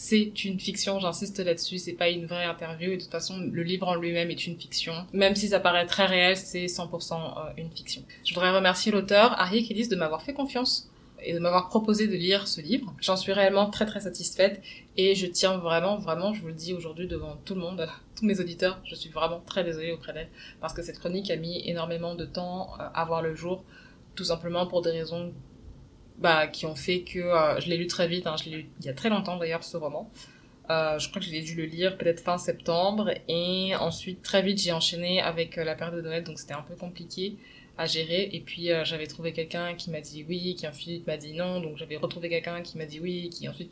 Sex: female